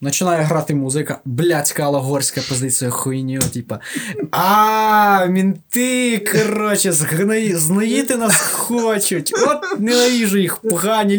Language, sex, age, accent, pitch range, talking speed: Ukrainian, male, 20-39, native, 150-210 Hz, 100 wpm